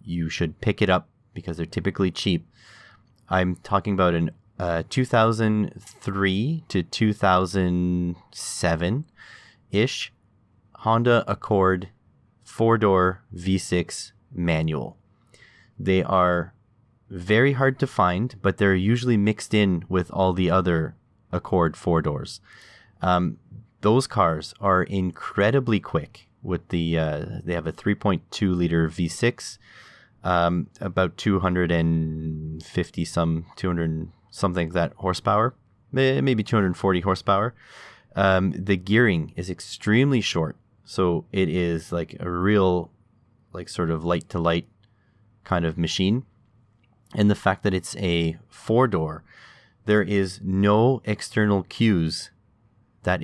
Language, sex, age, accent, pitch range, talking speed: English, male, 30-49, American, 85-110 Hz, 110 wpm